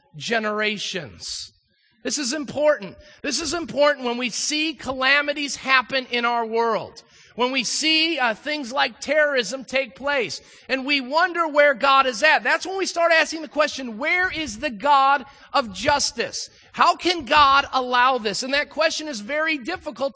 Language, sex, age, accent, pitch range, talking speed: English, male, 40-59, American, 235-295 Hz, 165 wpm